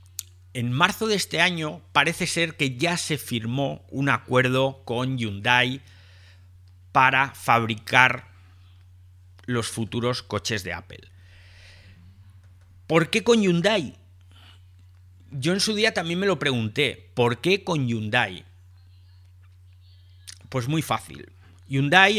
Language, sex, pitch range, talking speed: Spanish, male, 95-140 Hz, 115 wpm